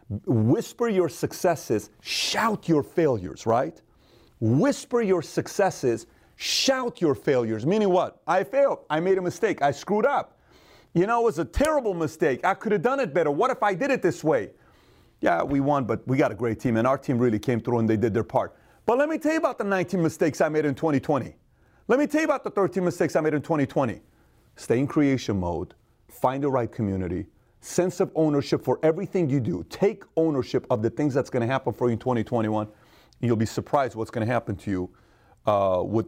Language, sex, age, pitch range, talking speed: English, male, 40-59, 130-195 Hz, 215 wpm